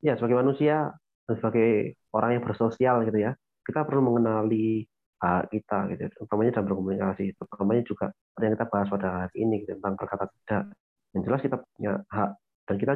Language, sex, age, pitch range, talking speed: Indonesian, male, 30-49, 105-125 Hz, 170 wpm